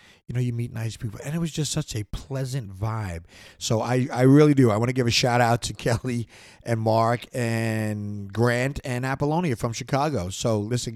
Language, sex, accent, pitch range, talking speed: English, male, American, 100-130 Hz, 210 wpm